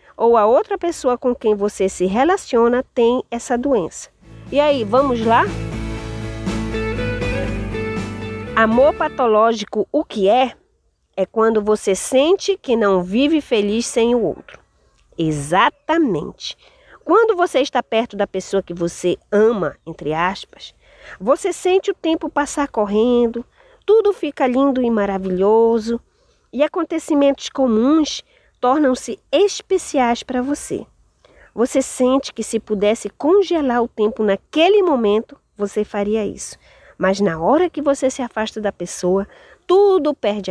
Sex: female